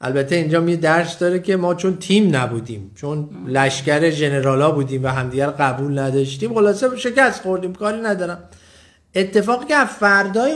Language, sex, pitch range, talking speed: Persian, male, 150-215 Hz, 155 wpm